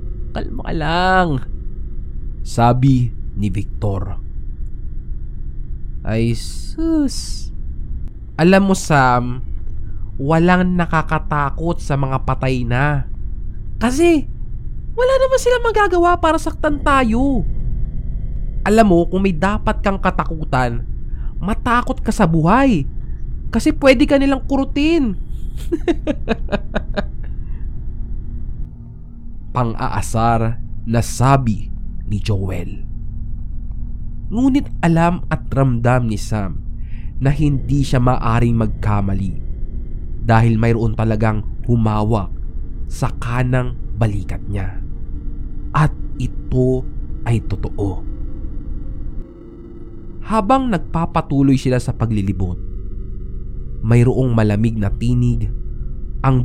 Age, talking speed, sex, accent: 20-39, 85 wpm, male, Filipino